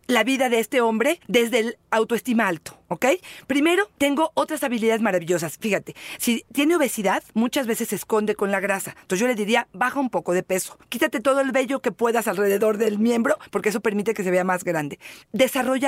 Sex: female